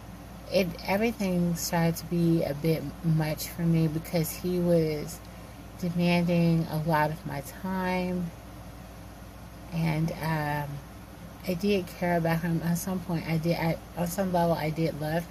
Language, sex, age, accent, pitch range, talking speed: English, female, 30-49, American, 105-170 Hz, 145 wpm